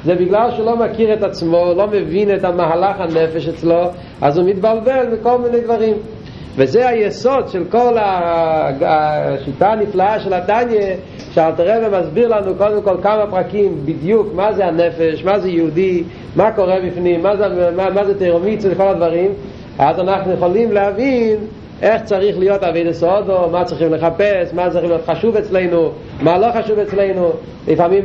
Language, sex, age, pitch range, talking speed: Hebrew, male, 40-59, 165-205 Hz, 155 wpm